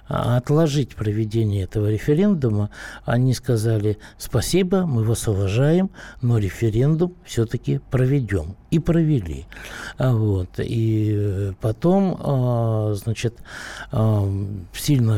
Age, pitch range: 60-79, 110-145 Hz